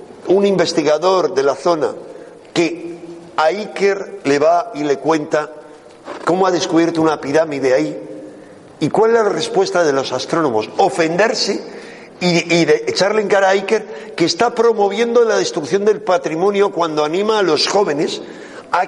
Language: Spanish